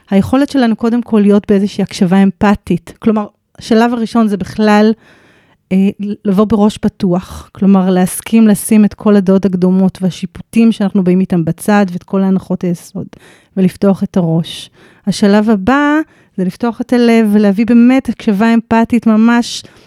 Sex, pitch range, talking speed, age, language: female, 205-255 Hz, 140 wpm, 30-49, Hebrew